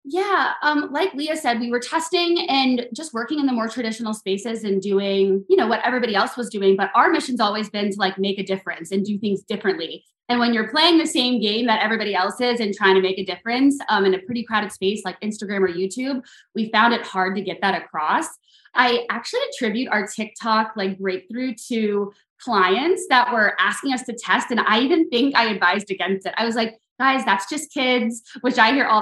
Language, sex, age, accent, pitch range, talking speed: English, female, 20-39, American, 195-245 Hz, 225 wpm